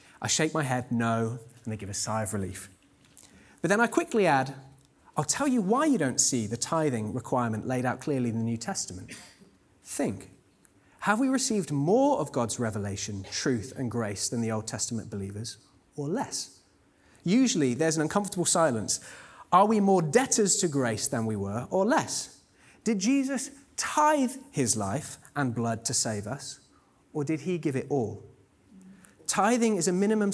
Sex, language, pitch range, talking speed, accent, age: male, English, 115-180 Hz, 175 wpm, British, 30-49